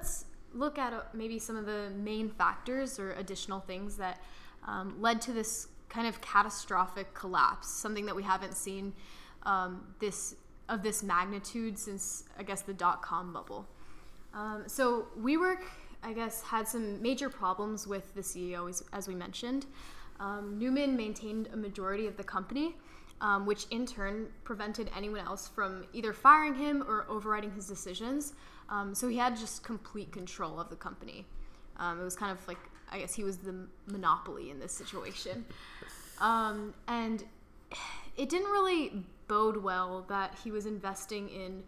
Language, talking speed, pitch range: English, 160 wpm, 195-235 Hz